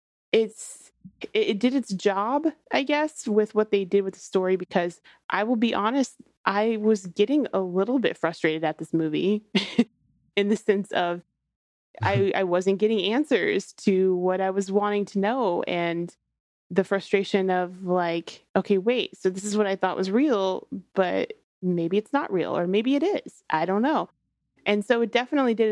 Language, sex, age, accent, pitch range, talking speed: English, female, 30-49, American, 185-220 Hz, 180 wpm